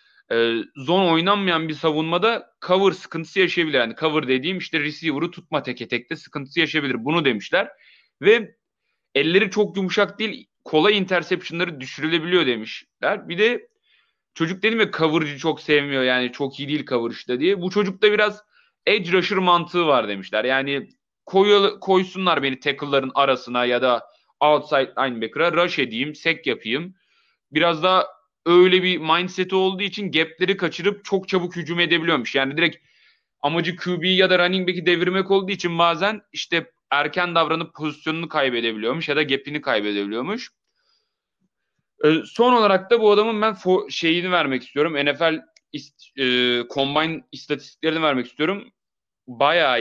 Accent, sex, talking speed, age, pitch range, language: native, male, 145 wpm, 30-49, 145-190 Hz, Turkish